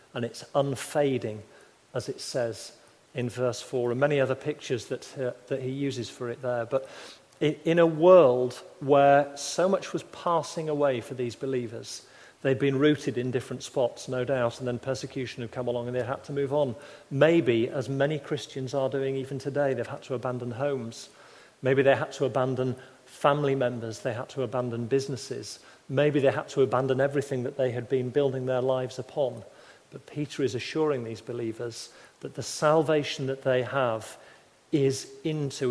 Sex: male